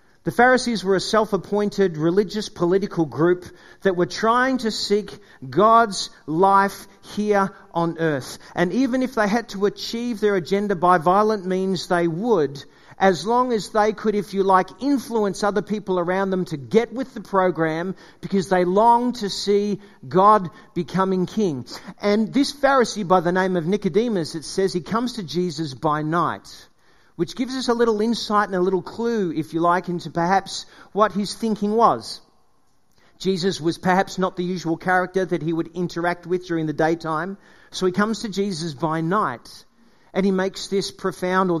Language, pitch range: English, 175-215 Hz